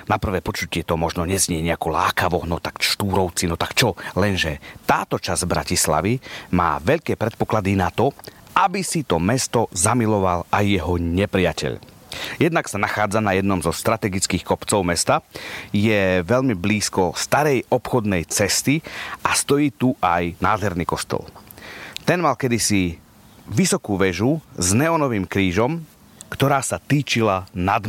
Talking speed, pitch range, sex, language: 140 wpm, 90-115 Hz, male, Slovak